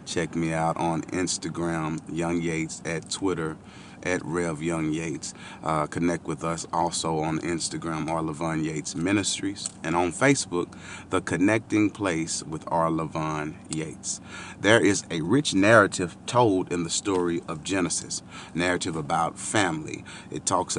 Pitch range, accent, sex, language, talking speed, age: 80-95 Hz, American, male, English, 145 wpm, 30-49